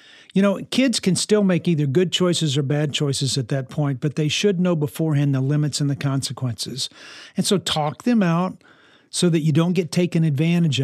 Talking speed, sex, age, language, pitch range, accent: 205 wpm, male, 50-69, English, 130-165 Hz, American